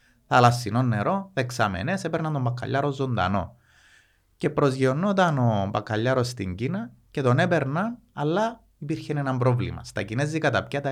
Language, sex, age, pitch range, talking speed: Greek, male, 30-49, 110-145 Hz, 130 wpm